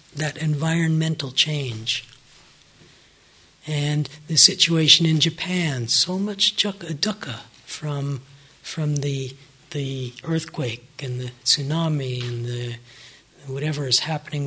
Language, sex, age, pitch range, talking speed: English, male, 60-79, 135-180 Hz, 100 wpm